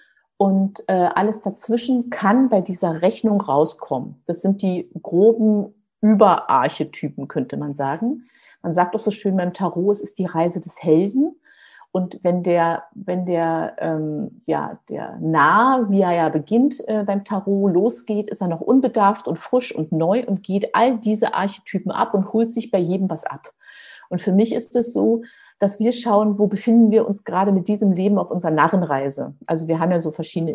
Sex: female